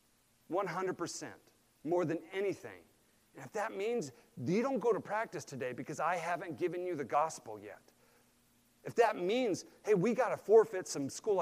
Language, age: English, 40-59